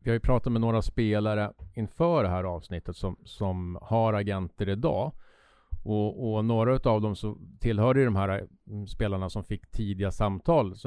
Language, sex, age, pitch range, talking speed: Swedish, male, 30-49, 95-115 Hz, 175 wpm